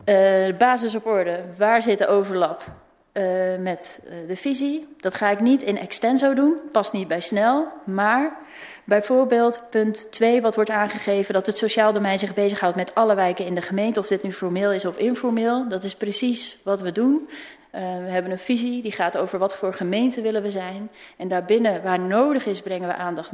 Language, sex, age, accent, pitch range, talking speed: Dutch, female, 30-49, Dutch, 190-225 Hz, 205 wpm